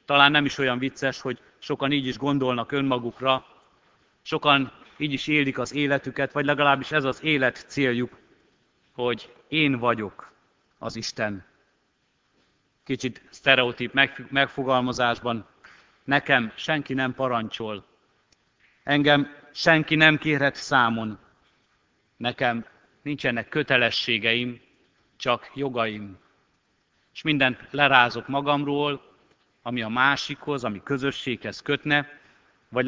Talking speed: 105 wpm